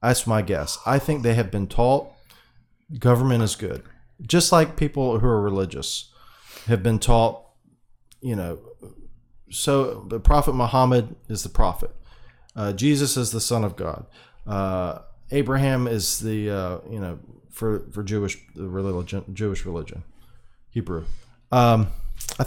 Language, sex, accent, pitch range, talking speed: English, male, American, 95-125 Hz, 140 wpm